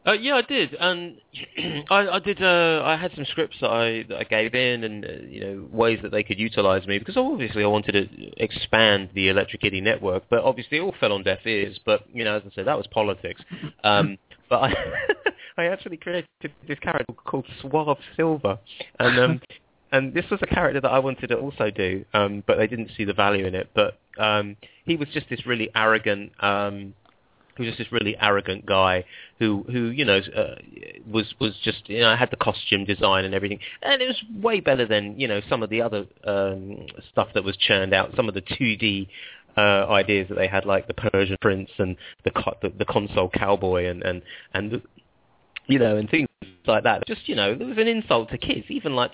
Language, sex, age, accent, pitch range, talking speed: English, male, 20-39, British, 100-135 Hz, 220 wpm